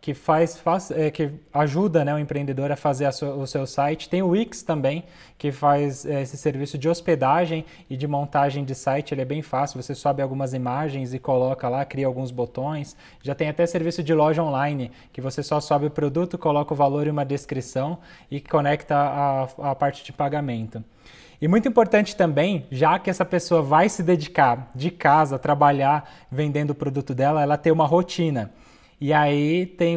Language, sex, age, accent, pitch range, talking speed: Portuguese, male, 20-39, Brazilian, 140-165 Hz, 180 wpm